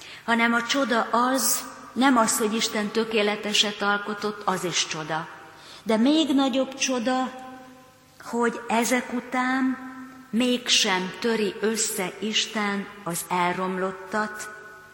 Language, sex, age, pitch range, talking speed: Hungarian, female, 40-59, 175-225 Hz, 105 wpm